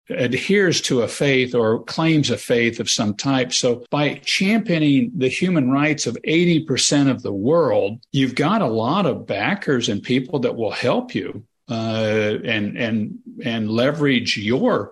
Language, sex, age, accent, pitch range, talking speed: English, male, 50-69, American, 125-155 Hz, 165 wpm